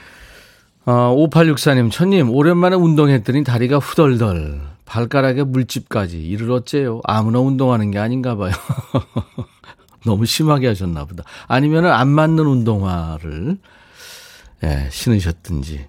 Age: 40-59